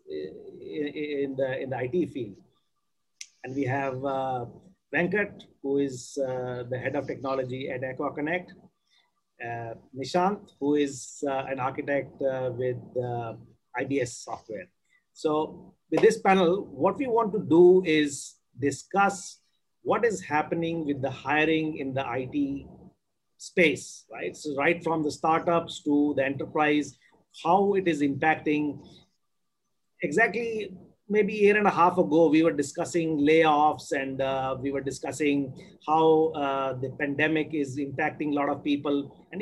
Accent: Indian